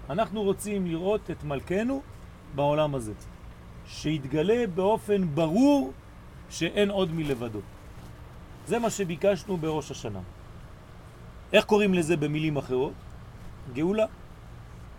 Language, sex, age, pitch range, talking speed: French, male, 40-59, 140-210 Hz, 95 wpm